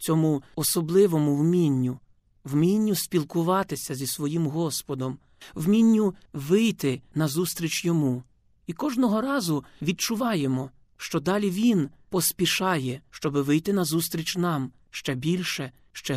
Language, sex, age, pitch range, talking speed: Ukrainian, male, 40-59, 140-195 Hz, 105 wpm